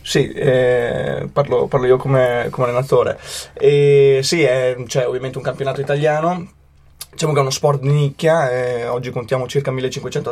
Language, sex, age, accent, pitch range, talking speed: Italian, male, 20-39, native, 125-140 Hz, 150 wpm